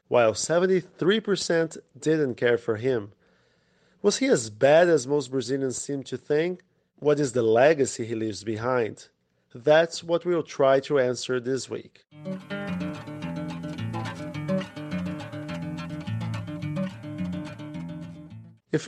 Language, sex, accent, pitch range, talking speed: English, male, Brazilian, 130-175 Hz, 100 wpm